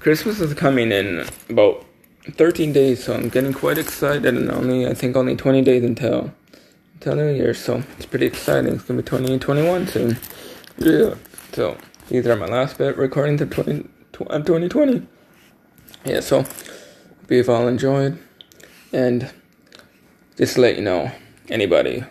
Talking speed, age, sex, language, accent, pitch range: 150 wpm, 20-39, male, English, American, 110-130 Hz